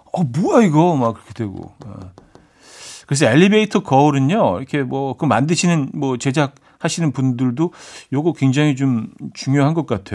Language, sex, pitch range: Korean, male, 120-165 Hz